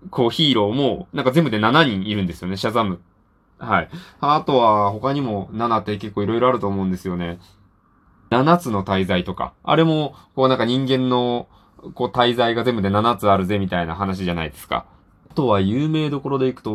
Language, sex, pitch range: Japanese, male, 95-135 Hz